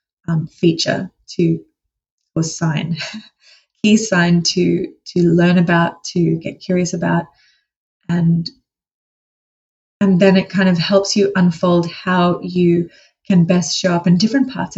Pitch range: 170-195 Hz